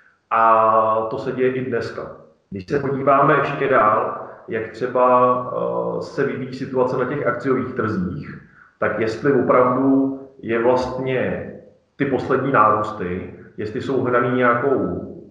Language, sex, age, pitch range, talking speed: Czech, male, 30-49, 115-130 Hz, 125 wpm